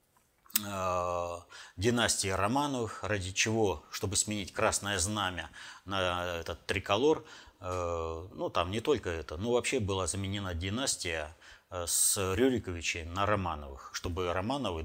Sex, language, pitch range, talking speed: male, Russian, 90-105 Hz, 110 wpm